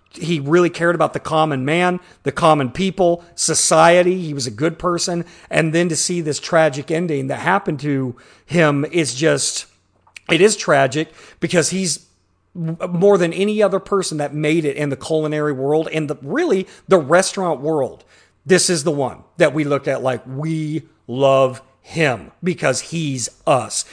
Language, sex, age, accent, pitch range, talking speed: English, male, 40-59, American, 145-175 Hz, 165 wpm